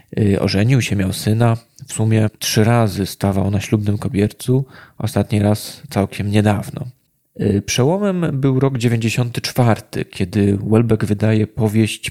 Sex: male